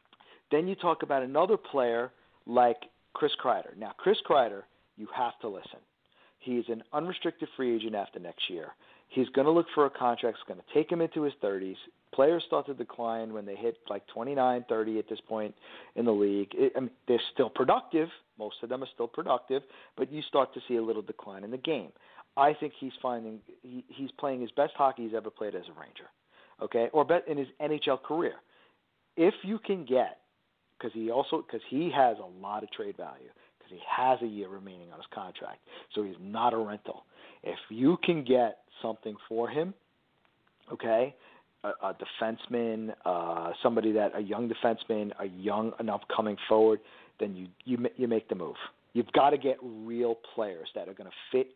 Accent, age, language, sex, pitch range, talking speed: American, 50-69, English, male, 110-140 Hz, 195 wpm